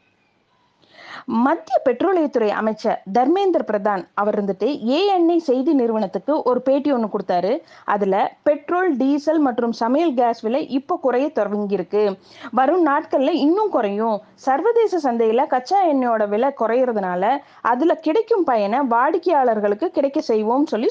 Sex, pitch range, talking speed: female, 225-330 Hz, 120 wpm